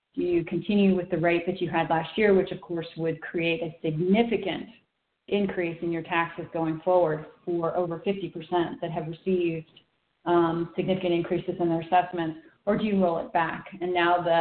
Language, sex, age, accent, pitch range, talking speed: English, female, 30-49, American, 170-195 Hz, 185 wpm